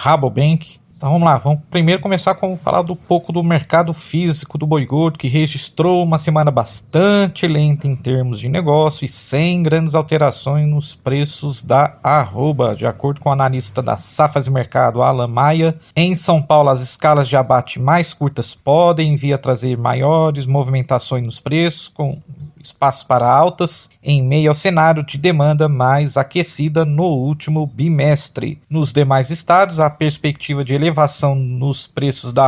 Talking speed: 165 wpm